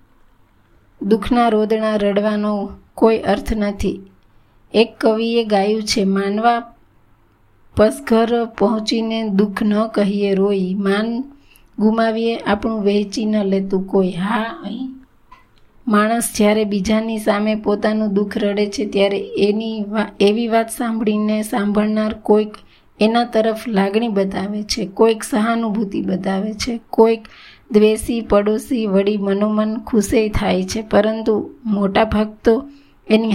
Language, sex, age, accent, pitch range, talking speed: Gujarati, female, 20-39, native, 200-225 Hz, 105 wpm